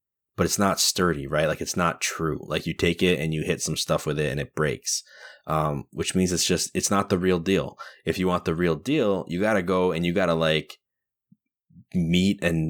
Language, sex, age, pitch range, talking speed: English, male, 20-39, 75-90 Hz, 235 wpm